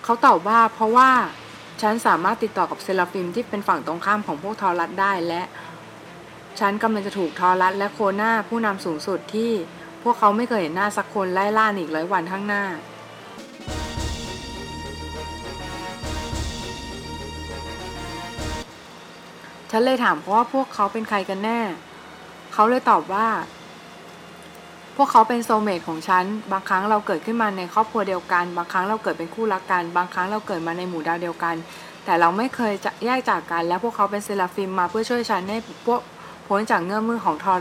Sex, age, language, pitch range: female, 20-39, Thai, 175-220 Hz